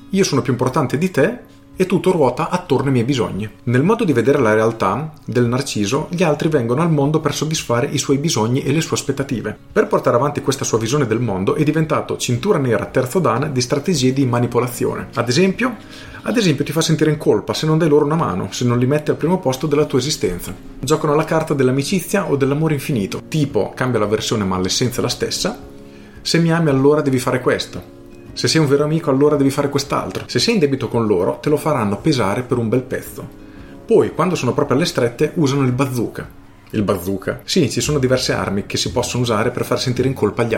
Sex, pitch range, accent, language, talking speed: male, 120-150 Hz, native, Italian, 220 wpm